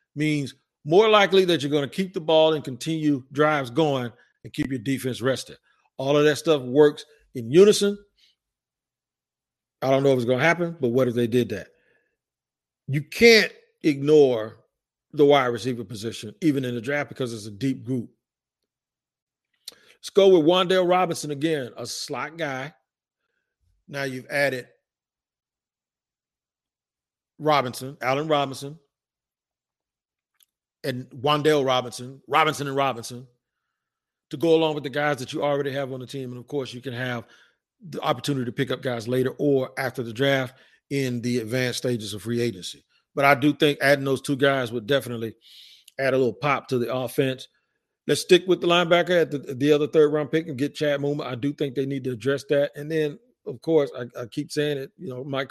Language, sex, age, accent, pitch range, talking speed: English, male, 50-69, American, 125-150 Hz, 180 wpm